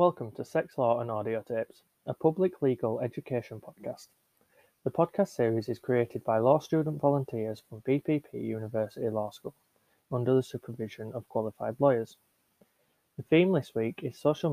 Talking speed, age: 155 wpm, 20-39